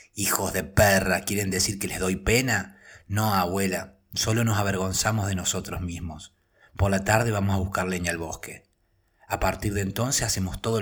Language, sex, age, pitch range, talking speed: Spanish, male, 30-49, 95-110 Hz, 175 wpm